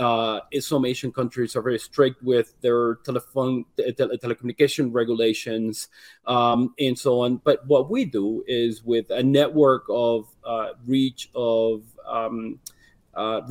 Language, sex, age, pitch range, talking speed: English, male, 30-49, 115-135 Hz, 140 wpm